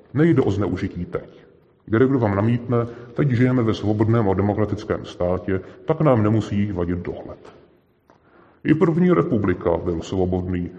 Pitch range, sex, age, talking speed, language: 95-120 Hz, female, 30-49, 140 wpm, Czech